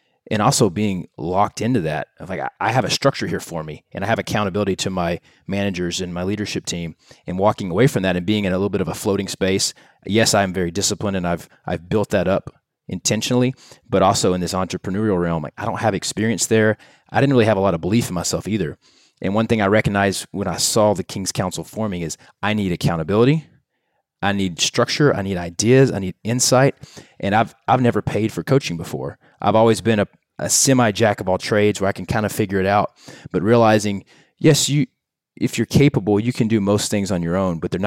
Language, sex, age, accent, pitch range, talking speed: English, male, 30-49, American, 95-110 Hz, 225 wpm